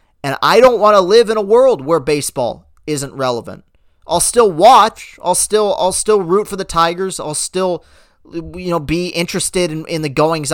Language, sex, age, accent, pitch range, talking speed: English, male, 30-49, American, 135-180 Hz, 195 wpm